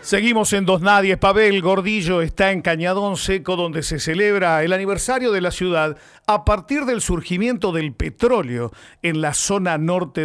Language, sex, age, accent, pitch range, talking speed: Spanish, male, 50-69, Argentinian, 165-210 Hz, 165 wpm